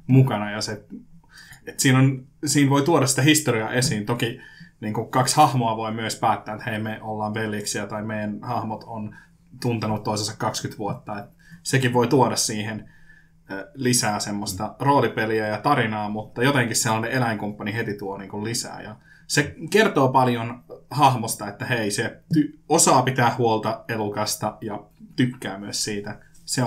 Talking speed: 150 wpm